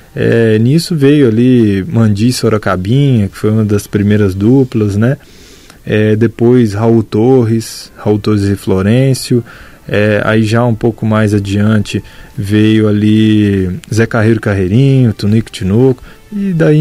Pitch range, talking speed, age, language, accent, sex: 100-115 Hz, 130 wpm, 20-39, Portuguese, Brazilian, male